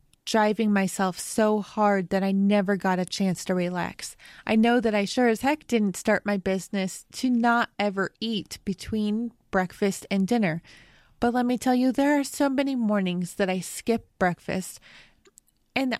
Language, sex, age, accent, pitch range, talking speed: English, female, 20-39, American, 195-250 Hz, 175 wpm